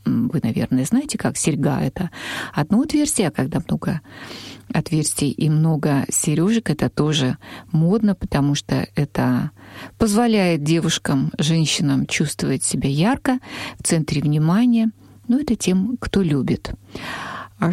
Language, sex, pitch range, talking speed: Russian, female, 145-195 Hz, 125 wpm